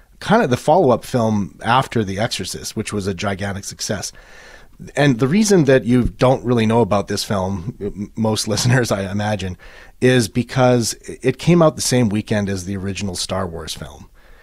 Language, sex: English, male